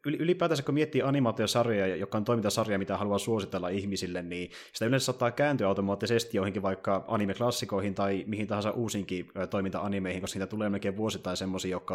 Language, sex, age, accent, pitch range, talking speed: Finnish, male, 30-49, native, 95-115 Hz, 160 wpm